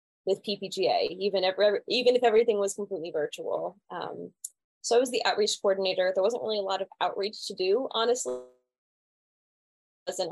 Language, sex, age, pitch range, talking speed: English, female, 10-29, 165-215 Hz, 170 wpm